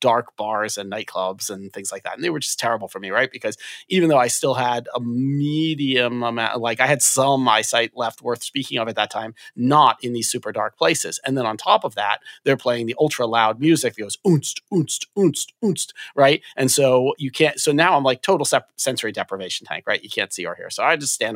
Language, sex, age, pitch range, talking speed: English, male, 30-49, 105-130 Hz, 235 wpm